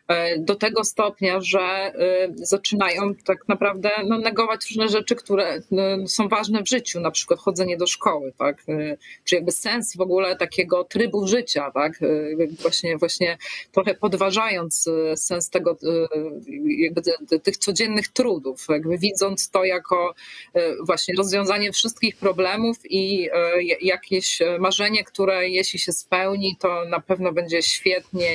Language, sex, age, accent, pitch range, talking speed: Polish, female, 30-49, native, 175-210 Hz, 130 wpm